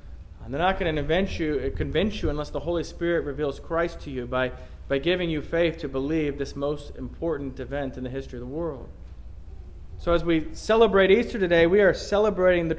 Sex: male